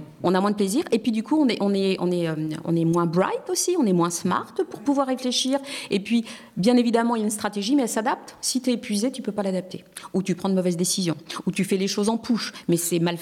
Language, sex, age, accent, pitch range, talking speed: French, female, 40-59, French, 180-230 Hz, 295 wpm